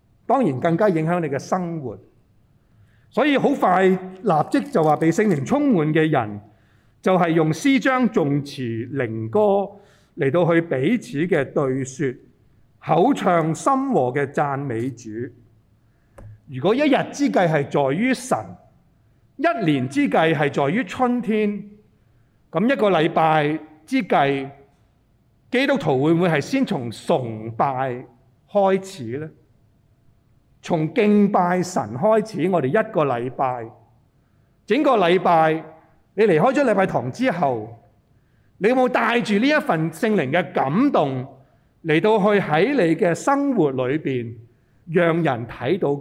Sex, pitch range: male, 125-205 Hz